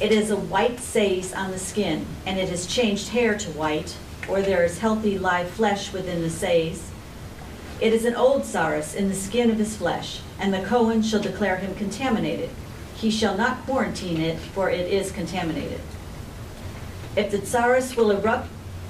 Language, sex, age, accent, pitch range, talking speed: English, female, 50-69, American, 170-220 Hz, 180 wpm